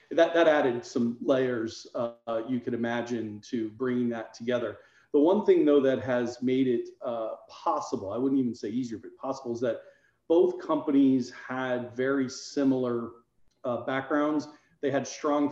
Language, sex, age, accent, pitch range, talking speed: English, male, 40-59, American, 120-140 Hz, 160 wpm